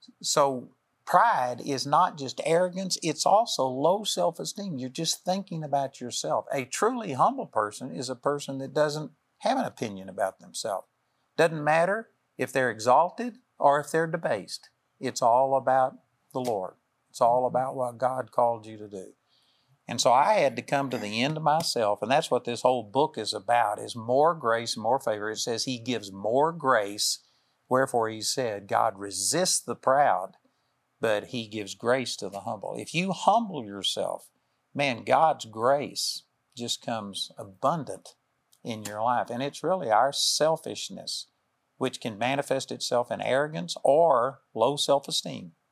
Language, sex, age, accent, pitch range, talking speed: English, male, 50-69, American, 115-150 Hz, 160 wpm